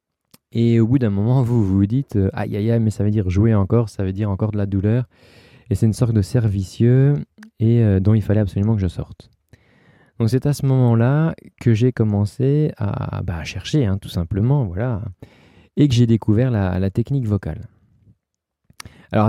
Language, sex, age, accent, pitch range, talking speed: French, male, 20-39, French, 100-125 Hz, 200 wpm